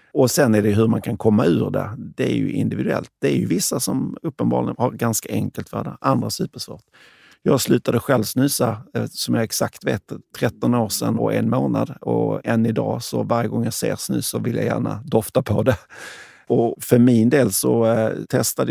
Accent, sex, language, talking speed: native, male, Swedish, 200 wpm